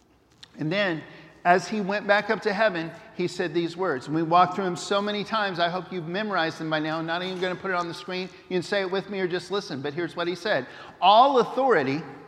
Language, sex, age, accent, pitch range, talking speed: English, male, 50-69, American, 175-210 Hz, 265 wpm